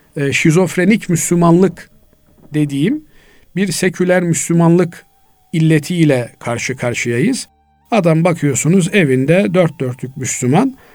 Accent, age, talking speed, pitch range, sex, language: native, 50-69, 80 wpm, 140-185 Hz, male, Turkish